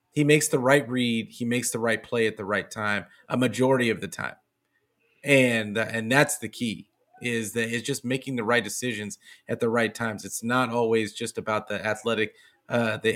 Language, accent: English, American